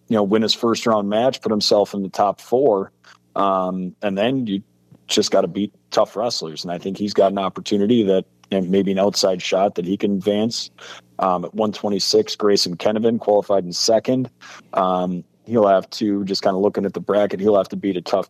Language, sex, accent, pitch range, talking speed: English, male, American, 95-110 Hz, 215 wpm